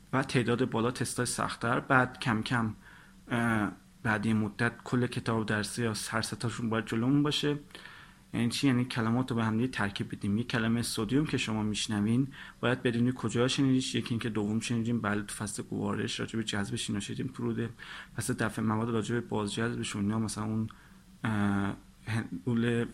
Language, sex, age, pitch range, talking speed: Persian, male, 30-49, 110-130 Hz, 155 wpm